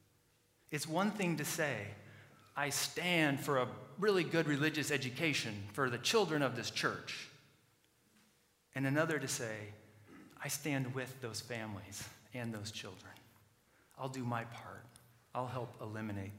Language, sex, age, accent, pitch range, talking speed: English, male, 40-59, American, 120-155 Hz, 140 wpm